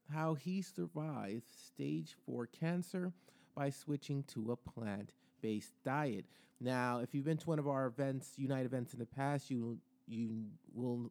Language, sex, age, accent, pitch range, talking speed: English, male, 30-49, American, 115-150 Hz, 155 wpm